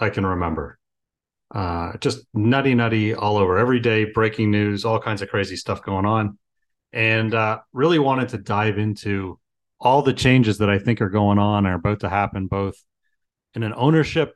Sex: male